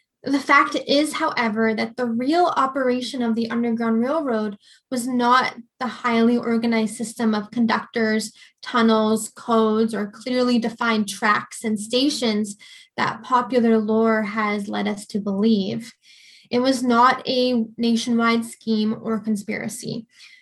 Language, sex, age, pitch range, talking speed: English, female, 10-29, 225-285 Hz, 130 wpm